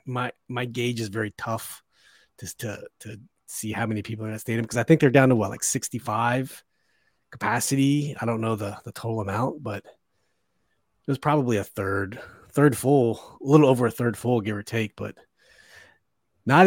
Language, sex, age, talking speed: English, male, 30-49, 190 wpm